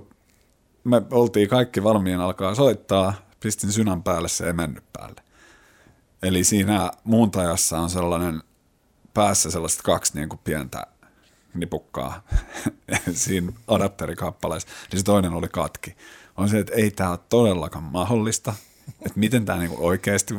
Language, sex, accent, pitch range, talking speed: Finnish, male, native, 85-105 Hz, 130 wpm